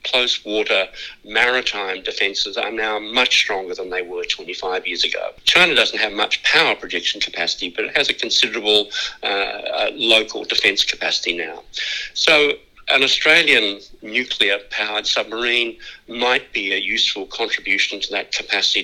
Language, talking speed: English, 135 wpm